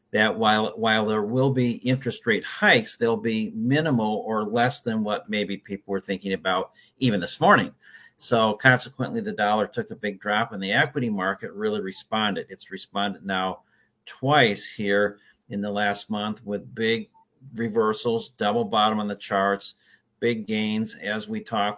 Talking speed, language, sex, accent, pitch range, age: 165 wpm, English, male, American, 105-125 Hz, 50-69